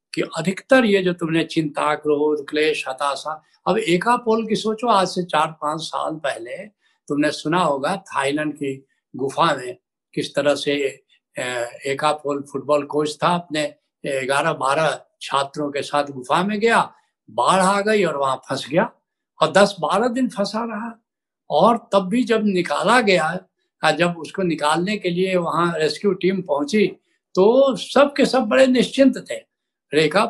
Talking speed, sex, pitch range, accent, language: 155 wpm, male, 155-210 Hz, native, Hindi